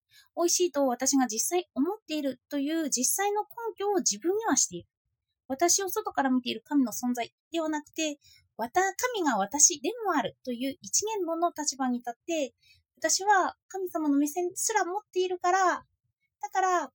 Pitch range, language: 255-360 Hz, Japanese